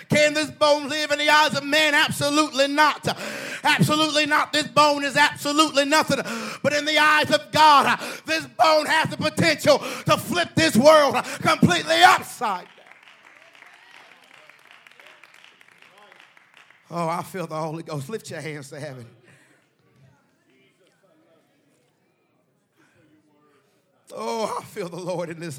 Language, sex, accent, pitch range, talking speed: English, male, American, 215-295 Hz, 125 wpm